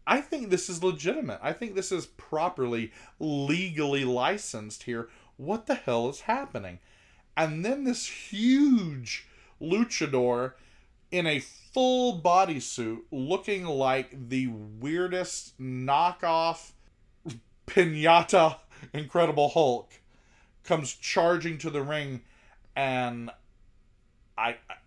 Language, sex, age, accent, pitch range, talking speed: English, male, 30-49, American, 125-175 Hz, 105 wpm